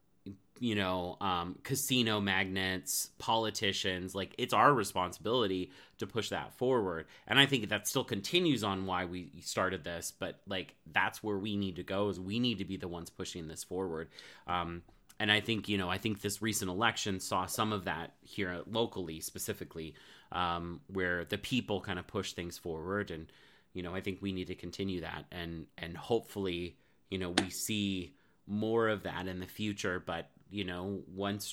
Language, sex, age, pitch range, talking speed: English, male, 30-49, 90-105 Hz, 185 wpm